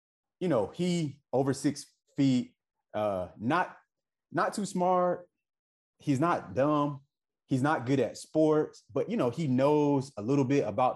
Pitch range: 105-145 Hz